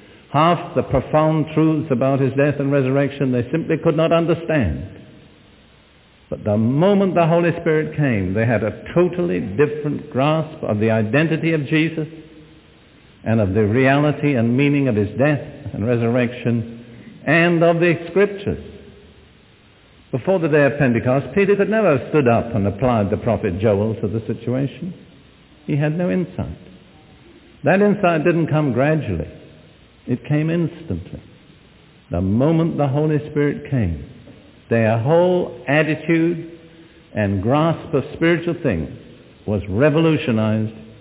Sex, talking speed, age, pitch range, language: male, 140 wpm, 60-79, 115-155 Hz, English